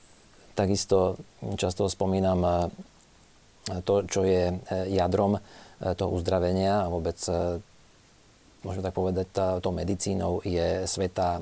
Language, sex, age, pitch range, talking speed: Slovak, male, 40-59, 90-100 Hz, 95 wpm